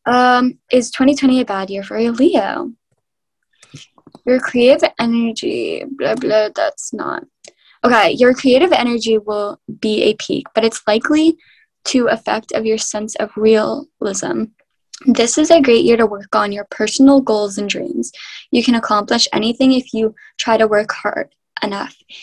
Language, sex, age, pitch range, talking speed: English, female, 10-29, 210-260 Hz, 155 wpm